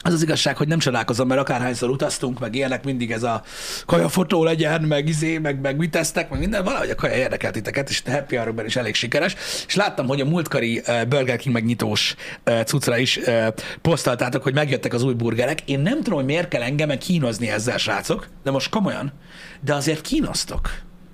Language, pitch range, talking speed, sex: Hungarian, 130-165 Hz, 195 wpm, male